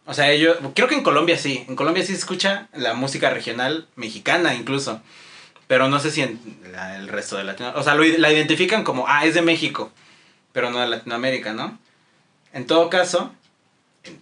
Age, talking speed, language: 30-49, 200 wpm, Spanish